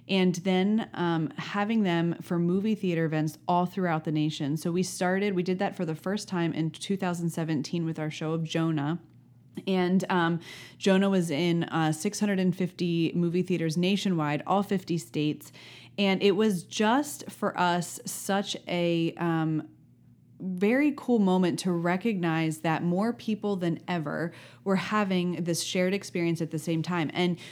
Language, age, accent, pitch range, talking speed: English, 30-49, American, 160-190 Hz, 155 wpm